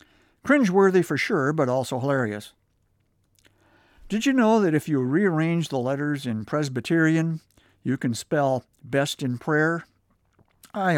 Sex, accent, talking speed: male, American, 130 wpm